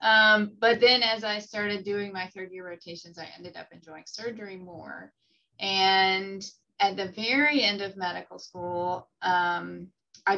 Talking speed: 155 wpm